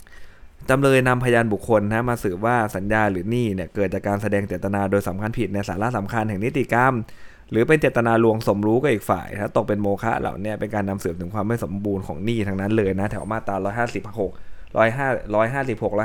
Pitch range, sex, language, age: 100-120 Hz, male, Thai, 20-39